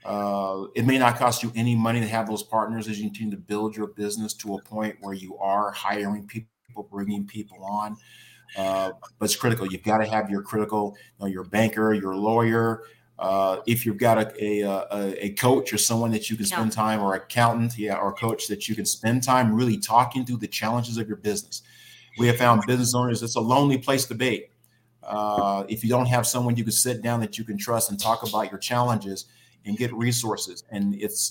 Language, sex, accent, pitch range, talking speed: English, male, American, 105-120 Hz, 220 wpm